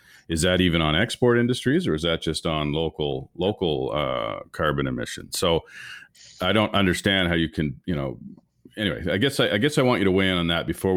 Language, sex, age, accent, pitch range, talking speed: English, male, 40-59, American, 80-105 Hz, 220 wpm